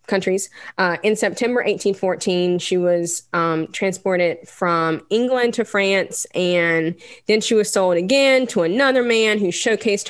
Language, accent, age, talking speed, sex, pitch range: English, American, 20-39, 145 wpm, female, 170-215 Hz